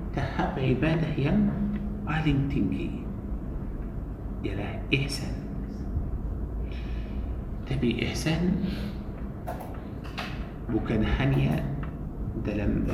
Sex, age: male, 50-69